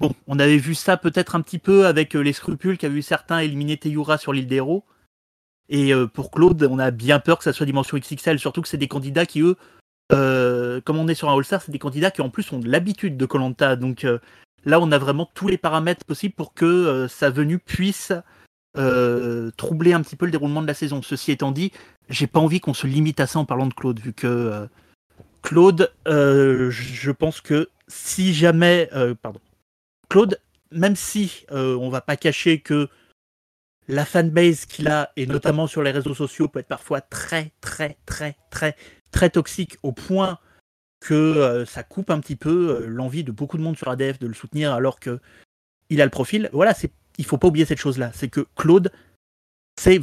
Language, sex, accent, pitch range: French, male, French, 130-165 Hz